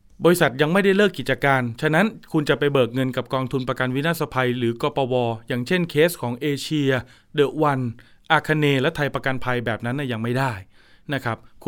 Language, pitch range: Thai, 115-150 Hz